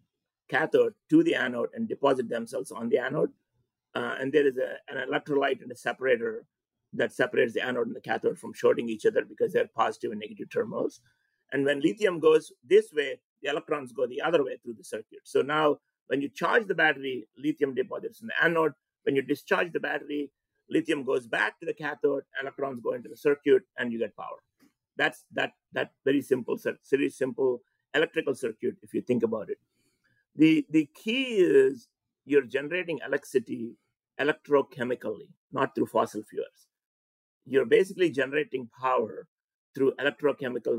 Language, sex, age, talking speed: English, male, 50-69, 170 wpm